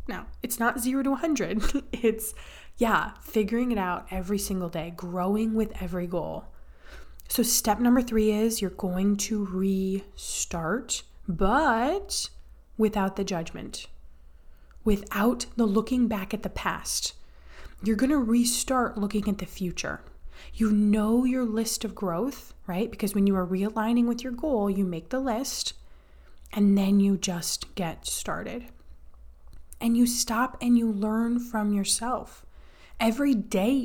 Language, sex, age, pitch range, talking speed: English, female, 20-39, 185-235 Hz, 145 wpm